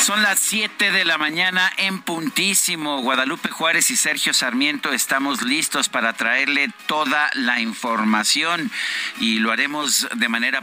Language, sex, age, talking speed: Spanish, male, 50-69, 140 wpm